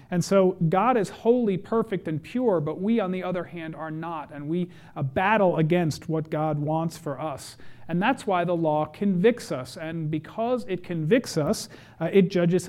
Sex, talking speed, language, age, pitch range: male, 190 wpm, English, 40-59, 150-195 Hz